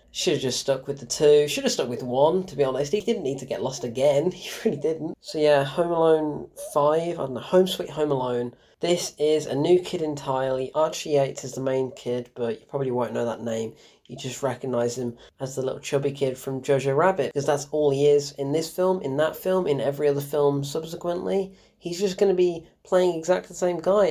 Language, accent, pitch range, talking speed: English, British, 135-180 Hz, 235 wpm